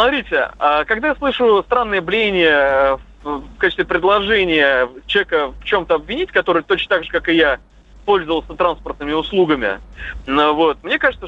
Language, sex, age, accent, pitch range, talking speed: Russian, male, 30-49, native, 160-255 Hz, 140 wpm